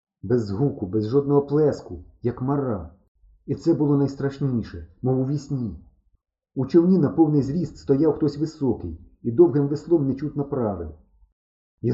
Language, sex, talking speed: Ukrainian, male, 140 wpm